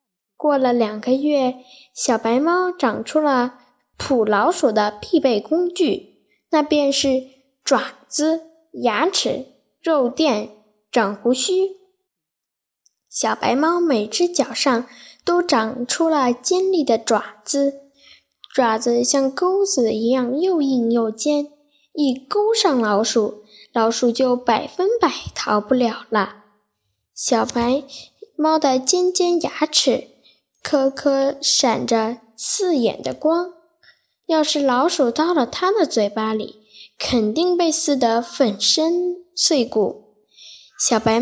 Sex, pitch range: female, 235-315 Hz